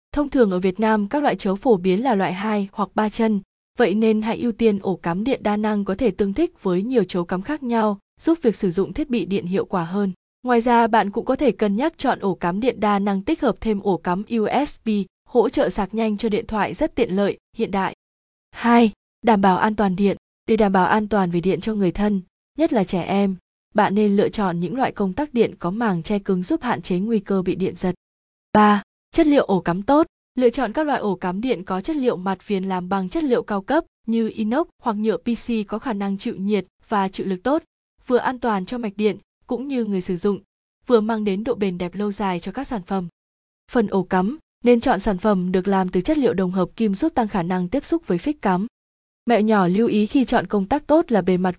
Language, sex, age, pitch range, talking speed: Vietnamese, female, 20-39, 190-235 Hz, 250 wpm